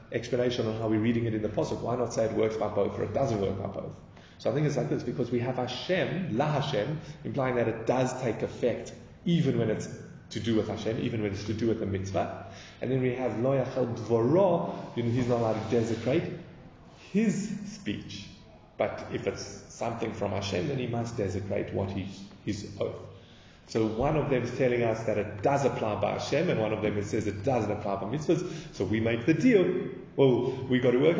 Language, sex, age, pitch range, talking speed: English, male, 30-49, 100-130 Hz, 230 wpm